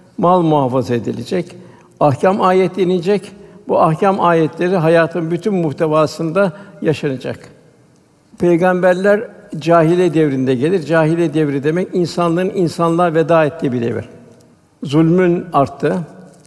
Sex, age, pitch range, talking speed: male, 60-79, 145-175 Hz, 100 wpm